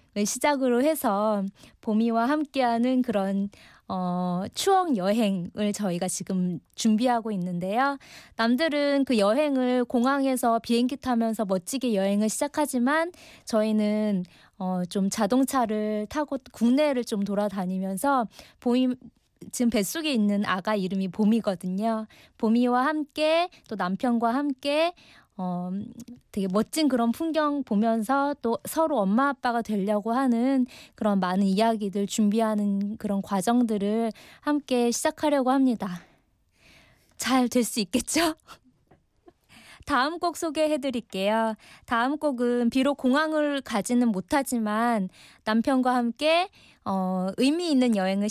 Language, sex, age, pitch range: Korean, female, 20-39, 205-275 Hz